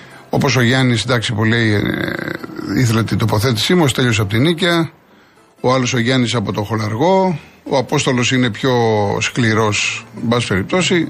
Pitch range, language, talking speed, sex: 110-145 Hz, Greek, 160 wpm, male